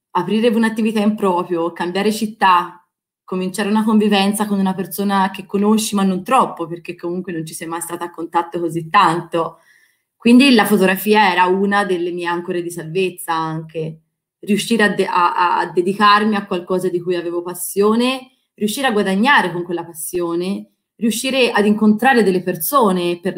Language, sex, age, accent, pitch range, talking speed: Italian, female, 20-39, native, 175-210 Hz, 160 wpm